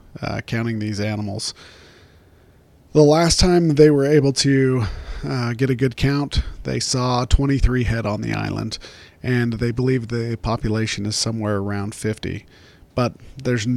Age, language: 40-59, English